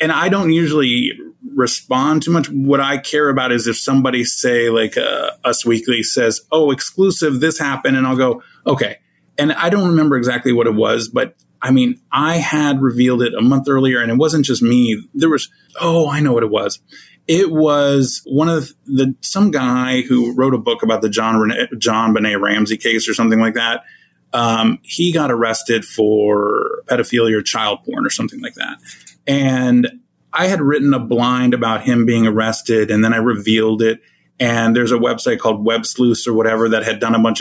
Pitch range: 115-160 Hz